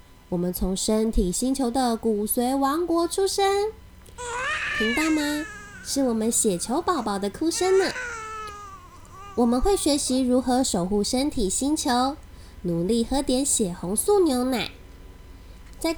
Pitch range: 200-320 Hz